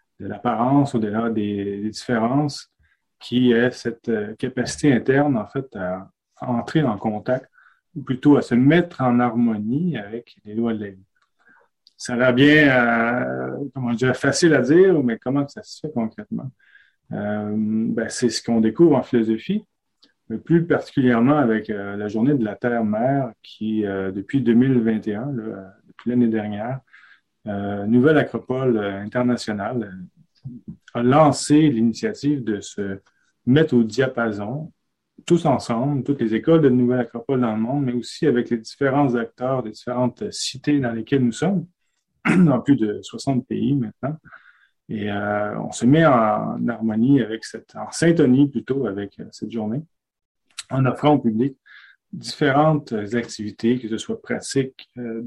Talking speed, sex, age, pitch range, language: 155 wpm, male, 30-49, 110-140 Hz, French